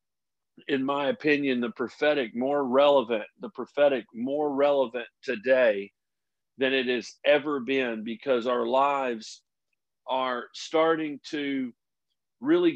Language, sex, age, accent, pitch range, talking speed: English, male, 40-59, American, 130-170 Hz, 115 wpm